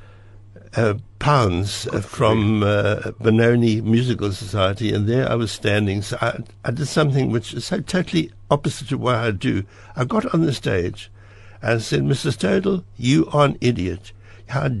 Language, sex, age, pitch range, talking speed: English, male, 60-79, 100-125 Hz, 165 wpm